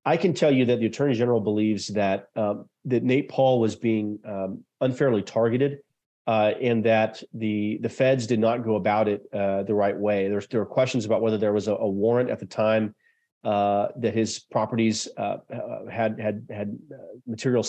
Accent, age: American, 40-59